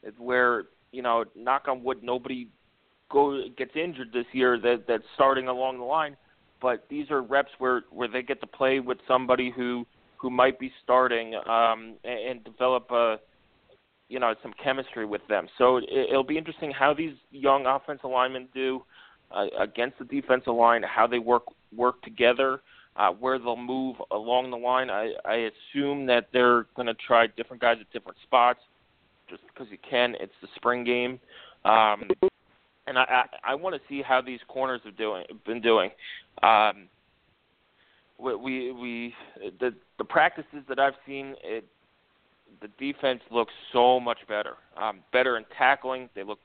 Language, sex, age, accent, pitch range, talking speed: English, male, 30-49, American, 120-135 Hz, 170 wpm